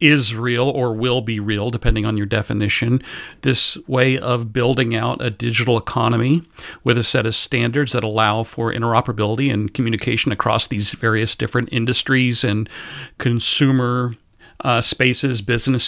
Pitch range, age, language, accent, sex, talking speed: 120-150 Hz, 40-59, English, American, male, 145 wpm